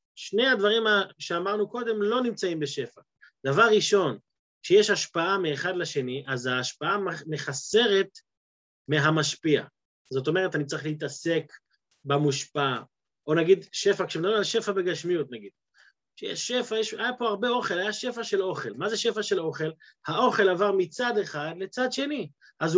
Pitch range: 165-235 Hz